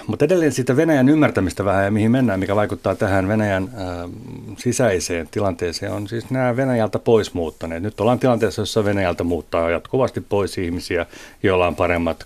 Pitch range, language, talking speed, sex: 90-115 Hz, Finnish, 155 wpm, male